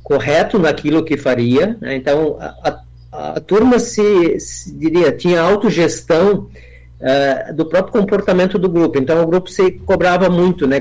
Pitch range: 135-190 Hz